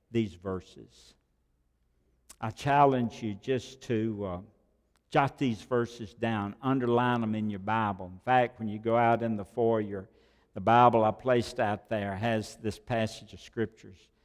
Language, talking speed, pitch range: English, 155 wpm, 100-125 Hz